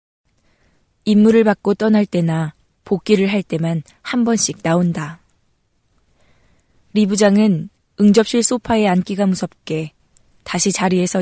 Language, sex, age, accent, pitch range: Korean, female, 20-39, native, 165-210 Hz